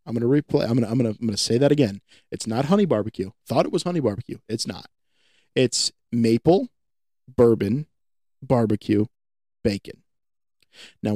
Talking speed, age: 175 wpm, 20-39